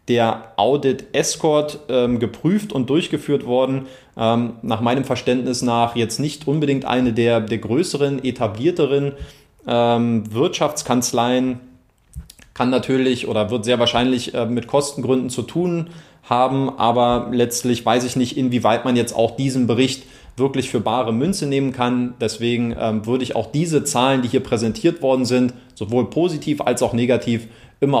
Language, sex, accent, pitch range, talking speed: German, male, German, 120-140 Hz, 145 wpm